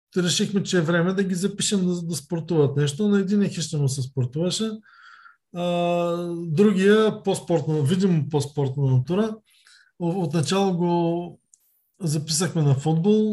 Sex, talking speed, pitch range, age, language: male, 115 wpm, 150-190 Hz, 20-39, Bulgarian